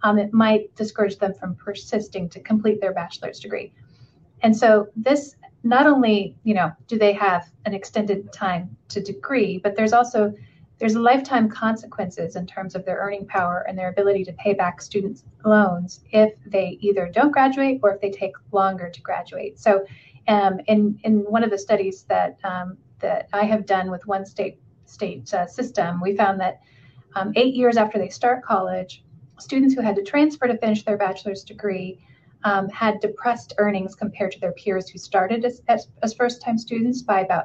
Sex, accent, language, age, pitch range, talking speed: female, American, English, 30-49, 190-220 Hz, 185 wpm